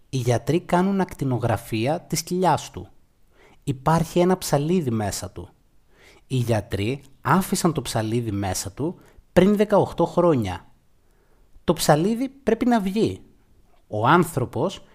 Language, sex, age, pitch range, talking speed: Greek, male, 30-49, 115-175 Hz, 115 wpm